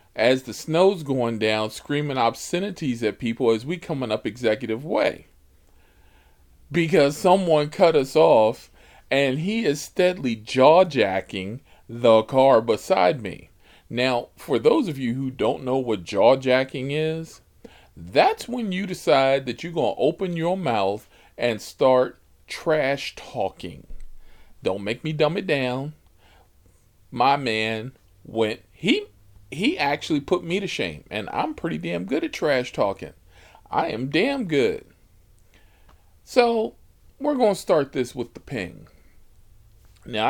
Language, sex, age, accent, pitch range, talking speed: English, male, 40-59, American, 95-145 Hz, 135 wpm